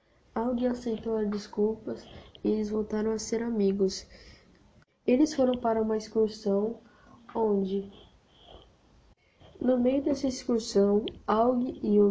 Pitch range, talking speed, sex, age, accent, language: 200-225 Hz, 105 wpm, female, 10-29, Brazilian, Portuguese